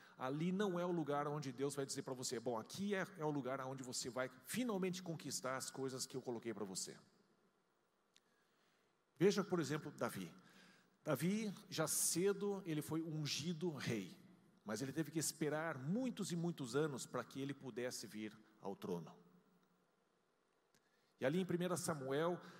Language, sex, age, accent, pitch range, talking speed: Portuguese, male, 50-69, Brazilian, 135-175 Hz, 160 wpm